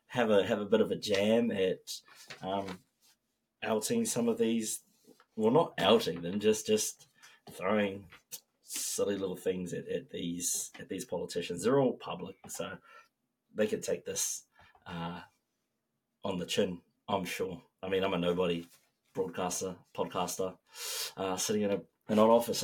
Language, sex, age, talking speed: English, male, 30-49, 150 wpm